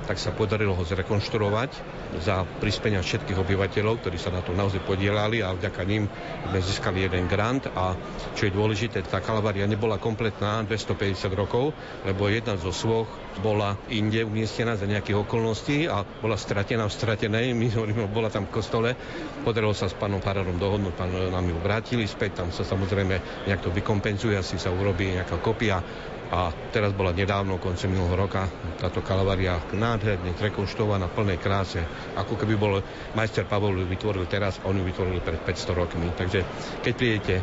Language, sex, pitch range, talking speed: Slovak, male, 95-110 Hz, 165 wpm